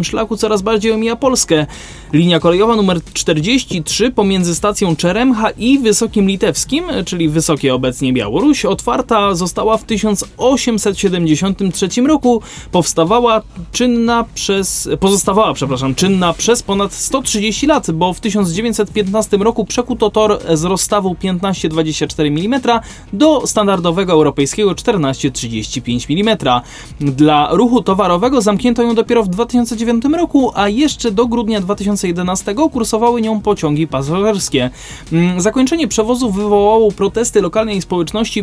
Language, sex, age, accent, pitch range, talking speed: Polish, male, 20-39, native, 175-225 Hz, 110 wpm